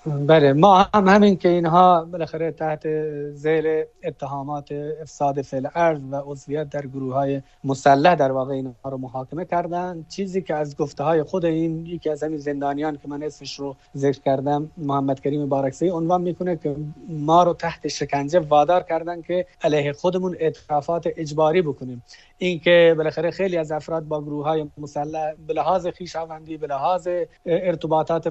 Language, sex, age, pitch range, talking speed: Persian, male, 30-49, 150-170 Hz, 155 wpm